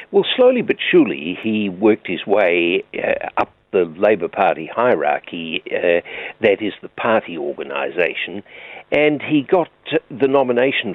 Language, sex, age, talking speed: English, male, 60-79, 135 wpm